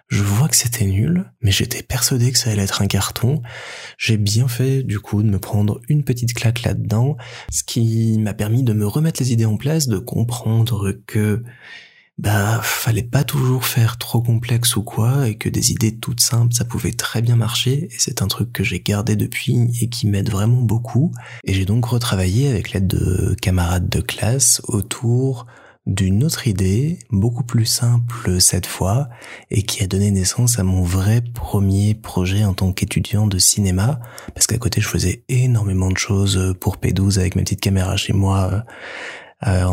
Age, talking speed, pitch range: 20-39, 185 wpm, 95-120 Hz